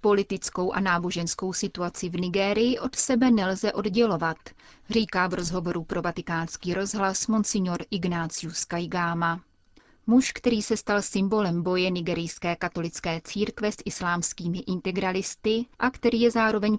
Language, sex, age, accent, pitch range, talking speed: Czech, female, 30-49, native, 175-205 Hz, 125 wpm